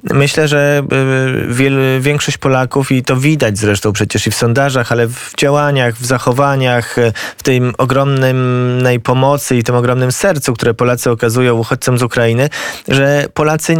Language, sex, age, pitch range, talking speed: Polish, male, 20-39, 115-130 Hz, 145 wpm